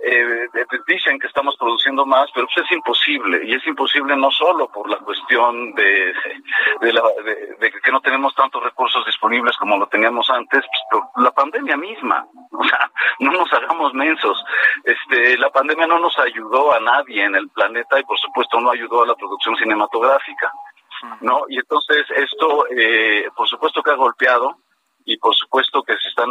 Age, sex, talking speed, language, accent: 40-59, male, 185 wpm, Spanish, Mexican